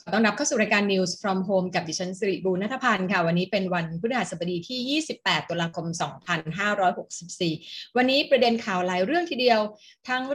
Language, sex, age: Thai, female, 20-39